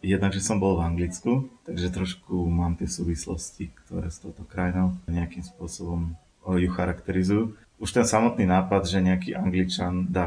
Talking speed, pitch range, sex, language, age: 150 wpm, 90-95 Hz, male, Slovak, 20-39